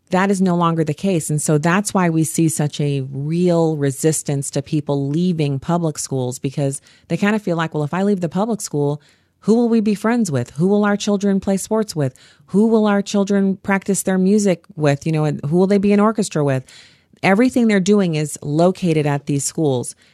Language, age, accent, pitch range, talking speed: English, 40-59, American, 140-175 Hz, 215 wpm